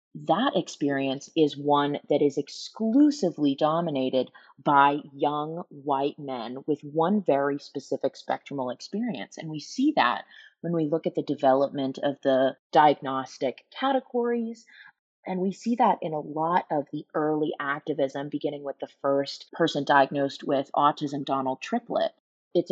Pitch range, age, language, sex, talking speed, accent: 140-180 Hz, 30-49, English, female, 145 wpm, American